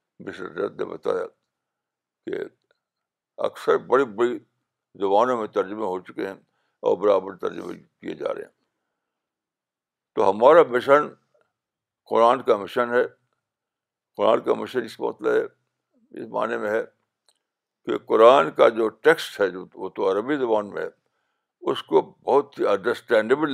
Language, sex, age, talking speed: Urdu, male, 60-79, 135 wpm